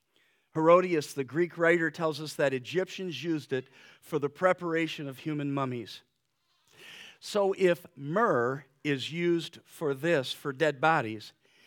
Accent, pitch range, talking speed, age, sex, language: American, 135-165 Hz, 135 wpm, 50-69, male, English